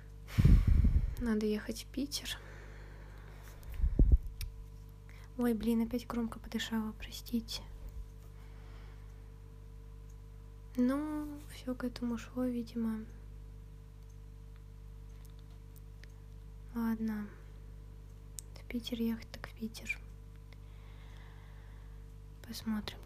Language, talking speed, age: Russian, 60 wpm, 20-39